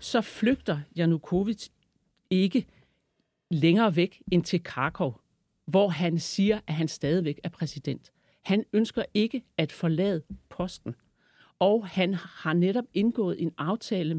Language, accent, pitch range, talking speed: Danish, native, 160-215 Hz, 125 wpm